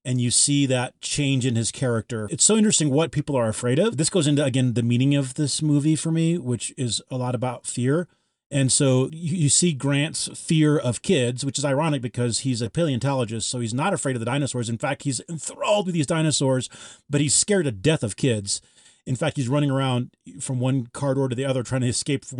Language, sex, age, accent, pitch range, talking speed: English, male, 30-49, American, 120-140 Hz, 230 wpm